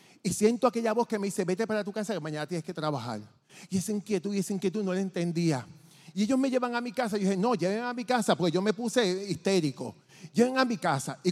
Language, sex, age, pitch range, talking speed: Spanish, male, 40-59, 160-220 Hz, 265 wpm